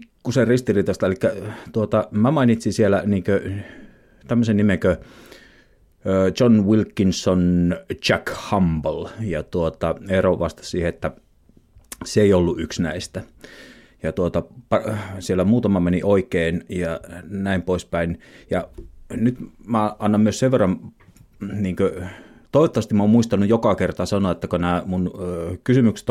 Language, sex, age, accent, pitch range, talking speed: Finnish, male, 30-49, native, 85-105 Hz, 125 wpm